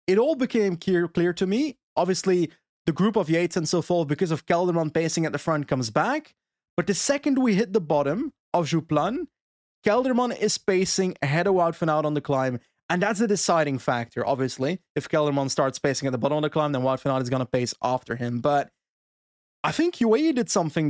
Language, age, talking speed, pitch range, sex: English, 20-39, 220 wpm, 150-230 Hz, male